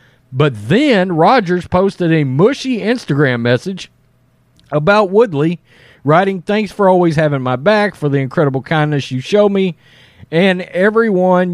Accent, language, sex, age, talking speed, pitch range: American, English, male, 40-59, 135 wpm, 130-190 Hz